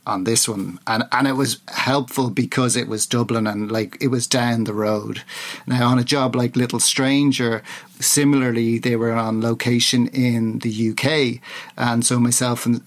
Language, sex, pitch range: English, male, 115-130 Hz